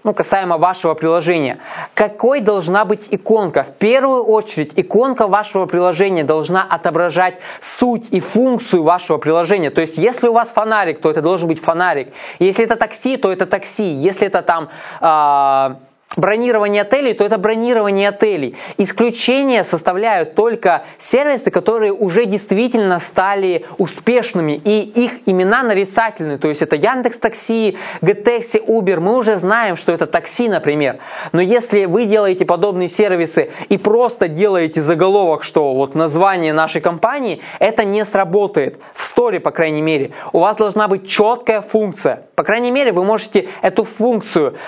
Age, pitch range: 20-39, 175-225 Hz